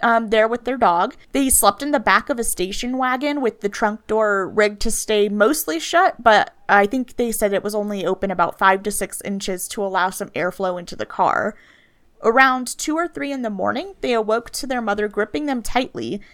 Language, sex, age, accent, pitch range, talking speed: English, female, 20-39, American, 200-250 Hz, 215 wpm